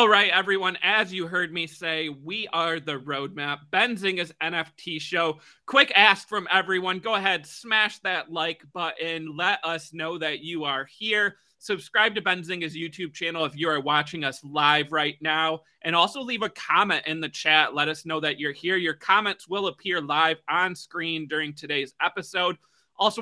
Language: English